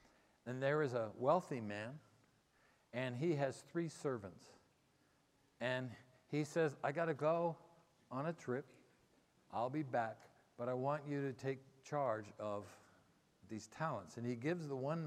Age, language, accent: 60-79, English, American